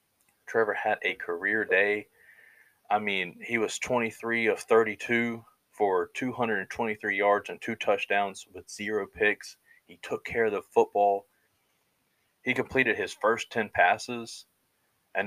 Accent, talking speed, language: American, 135 wpm, English